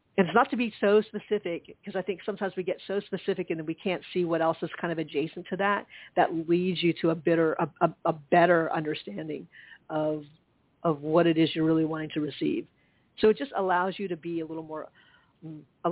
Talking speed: 225 wpm